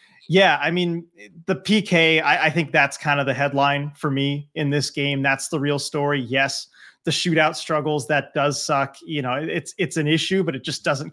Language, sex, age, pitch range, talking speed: English, male, 20-39, 145-175 Hz, 210 wpm